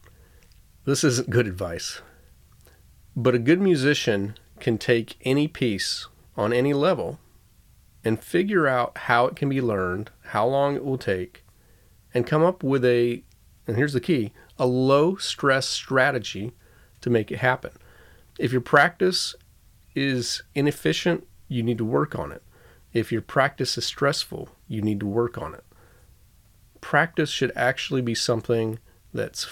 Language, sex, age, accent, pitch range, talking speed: English, male, 40-59, American, 100-130 Hz, 150 wpm